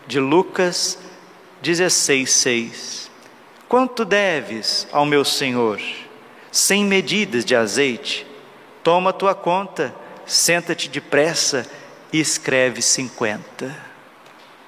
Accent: Brazilian